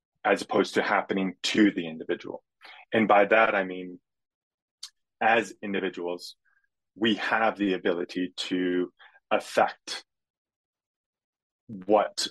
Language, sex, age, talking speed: English, male, 20-39, 100 wpm